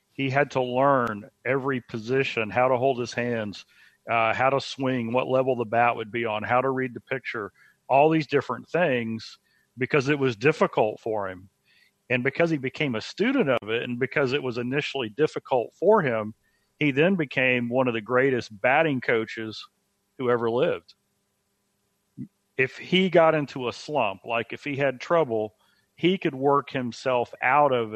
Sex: male